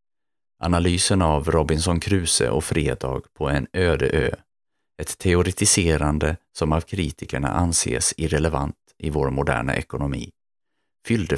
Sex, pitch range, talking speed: male, 75-95 Hz, 115 wpm